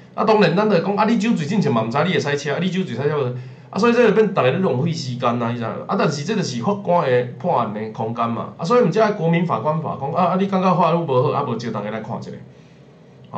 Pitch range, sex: 135-195 Hz, male